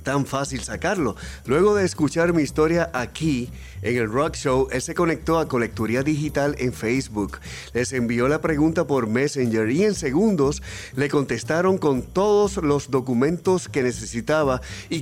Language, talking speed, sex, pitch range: Spanish, 155 wpm, male, 120-160 Hz